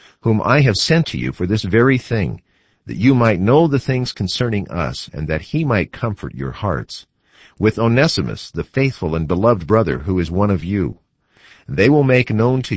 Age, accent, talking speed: 50-69, American, 195 wpm